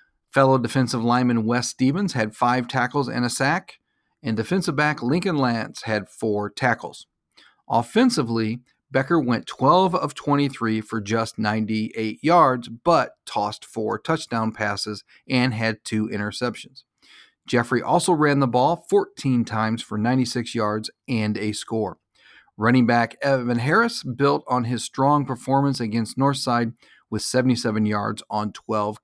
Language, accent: English, American